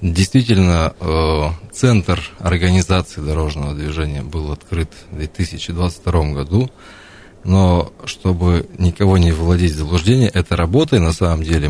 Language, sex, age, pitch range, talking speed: Russian, male, 20-39, 75-95 Hz, 120 wpm